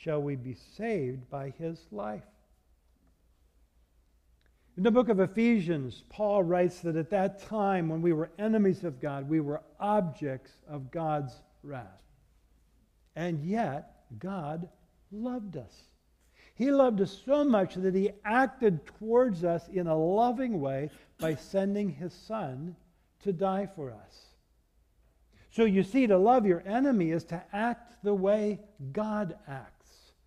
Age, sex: 60-79, male